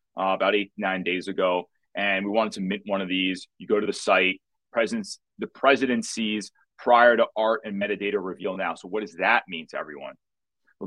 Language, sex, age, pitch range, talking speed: English, male, 30-49, 100-140 Hz, 210 wpm